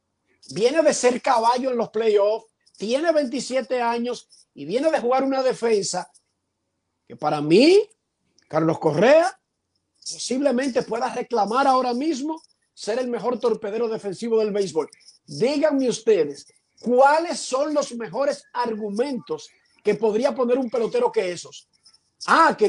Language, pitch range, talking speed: Spanish, 195-260 Hz, 130 wpm